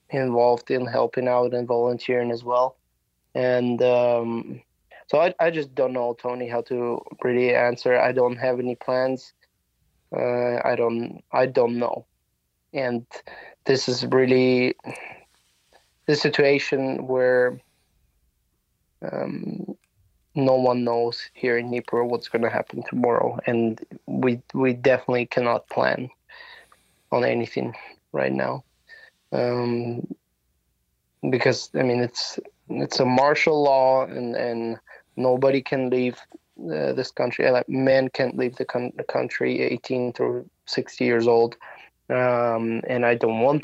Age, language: 20-39, English